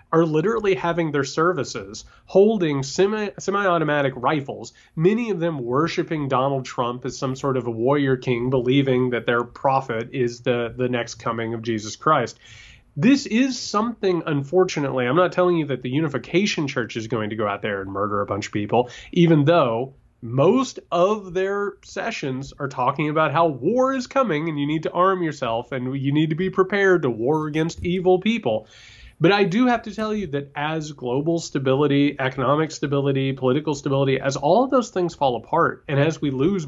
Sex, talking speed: male, 185 wpm